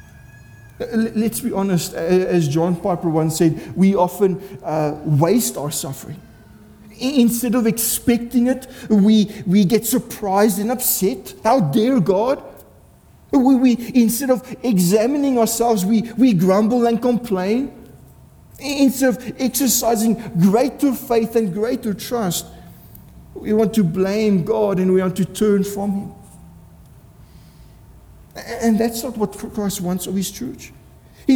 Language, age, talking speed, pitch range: English, 50-69, 130 wpm, 190-235 Hz